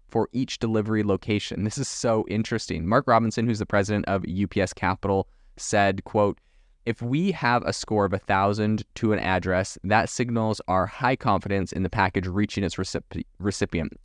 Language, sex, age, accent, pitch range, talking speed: English, male, 20-39, American, 95-115 Hz, 170 wpm